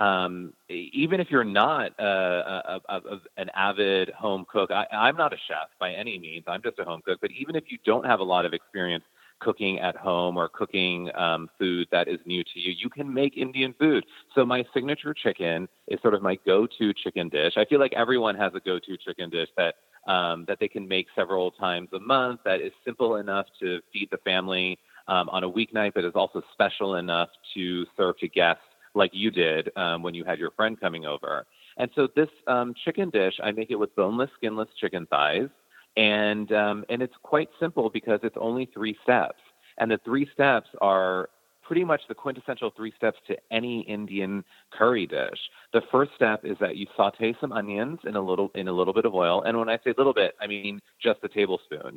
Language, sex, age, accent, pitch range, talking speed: English, male, 30-49, American, 90-125 Hz, 215 wpm